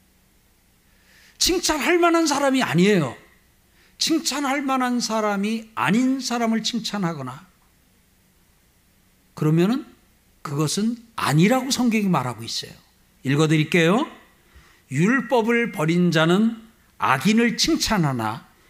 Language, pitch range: Korean, 155-250 Hz